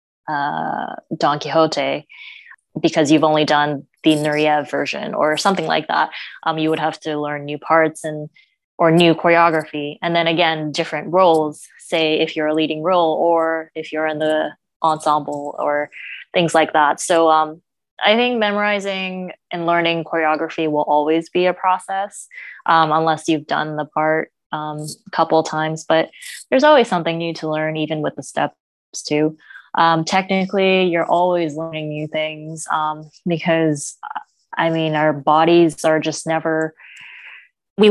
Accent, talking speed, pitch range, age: American, 155 wpm, 155-170 Hz, 20-39